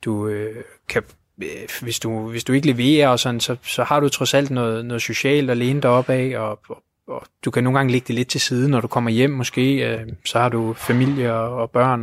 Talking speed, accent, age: 255 wpm, native, 20-39